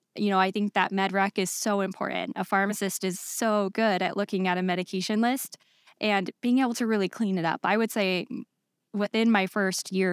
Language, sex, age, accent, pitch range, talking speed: English, female, 10-29, American, 185-225 Hz, 215 wpm